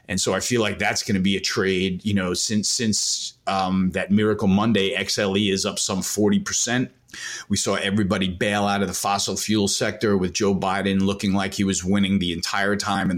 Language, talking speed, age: English, 215 wpm, 30-49